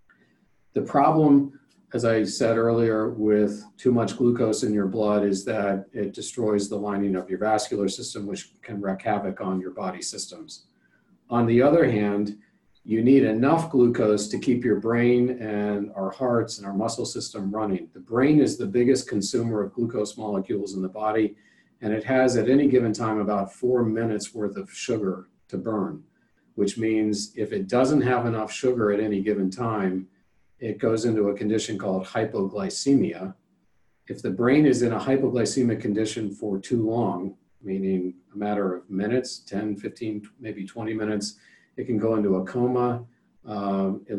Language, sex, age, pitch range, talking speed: English, male, 50-69, 100-120 Hz, 170 wpm